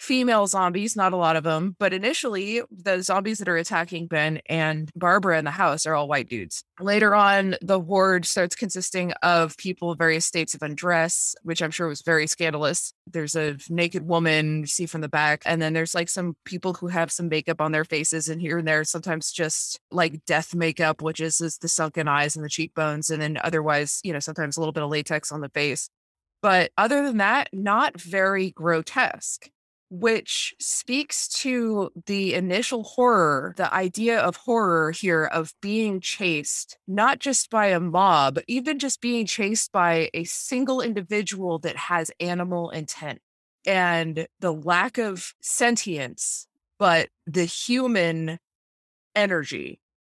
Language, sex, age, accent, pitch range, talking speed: English, female, 20-39, American, 160-195 Hz, 170 wpm